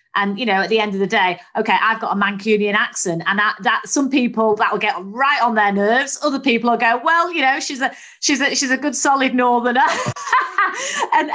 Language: English